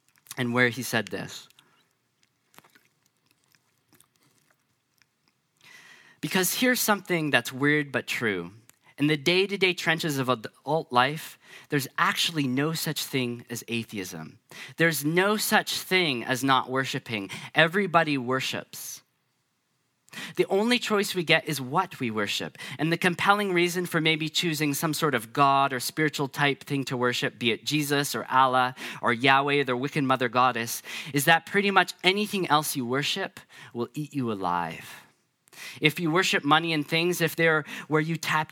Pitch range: 130-165 Hz